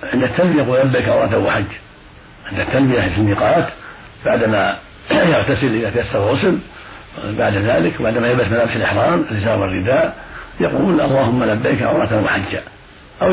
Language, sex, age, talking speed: Arabic, male, 60-79, 130 wpm